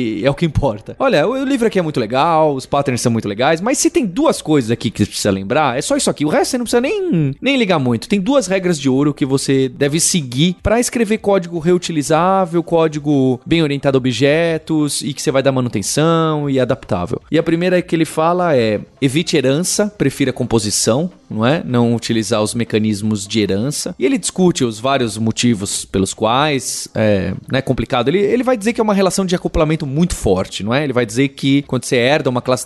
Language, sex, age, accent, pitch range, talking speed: Portuguese, male, 20-39, Brazilian, 125-170 Hz, 215 wpm